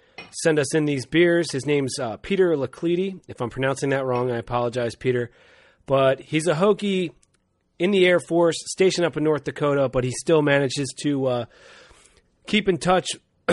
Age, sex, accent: 30-49, male, American